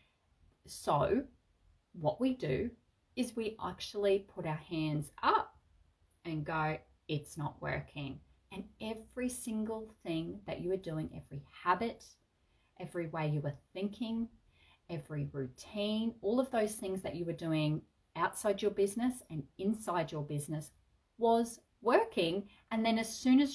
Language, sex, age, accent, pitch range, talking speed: English, female, 30-49, Australian, 155-220 Hz, 140 wpm